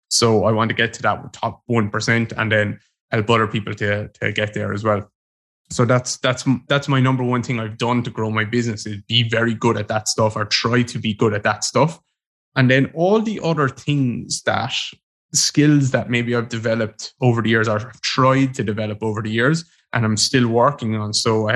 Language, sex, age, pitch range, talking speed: English, male, 20-39, 110-130 Hz, 220 wpm